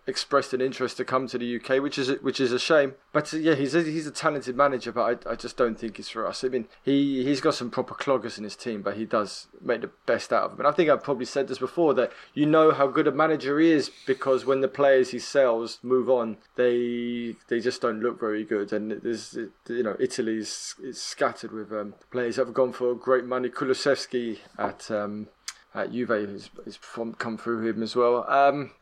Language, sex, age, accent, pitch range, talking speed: English, male, 20-39, British, 120-150 Hz, 240 wpm